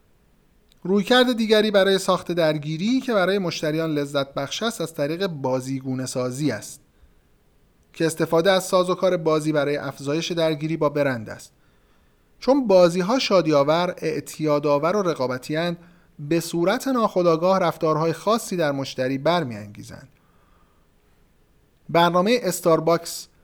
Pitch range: 145-185 Hz